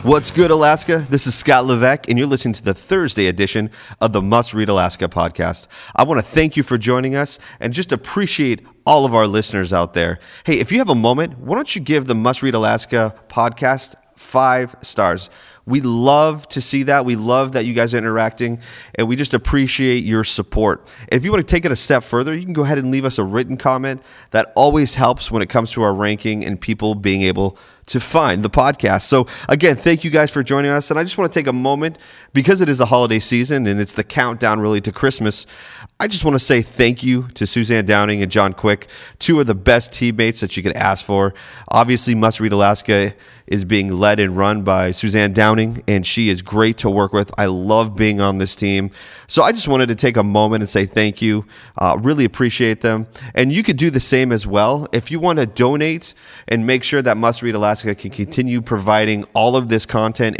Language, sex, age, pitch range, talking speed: English, male, 30-49, 105-135 Hz, 225 wpm